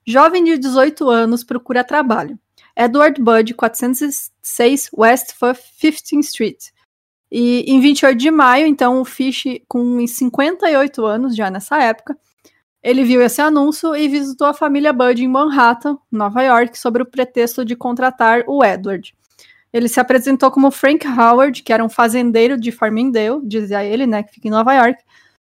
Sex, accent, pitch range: female, Brazilian, 230-275 Hz